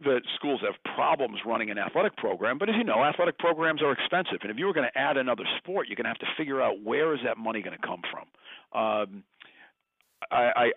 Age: 50-69